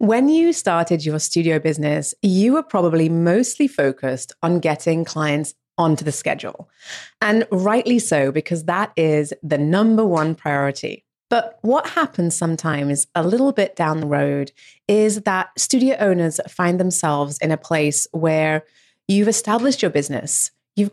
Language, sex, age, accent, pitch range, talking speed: English, female, 30-49, British, 155-205 Hz, 150 wpm